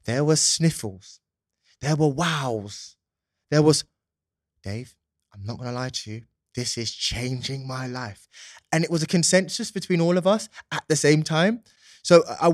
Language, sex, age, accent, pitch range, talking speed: English, male, 20-39, British, 110-150 Hz, 170 wpm